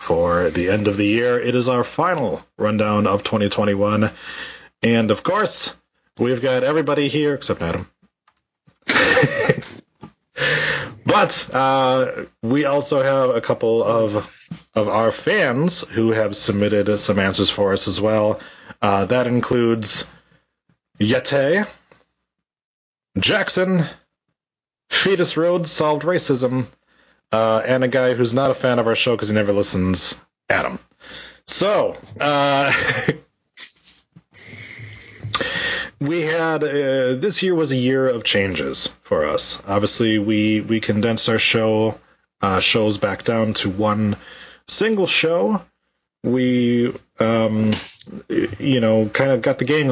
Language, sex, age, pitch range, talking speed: English, male, 30-49, 105-130 Hz, 125 wpm